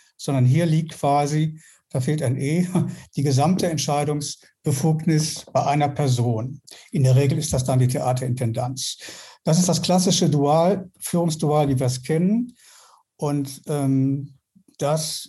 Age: 60-79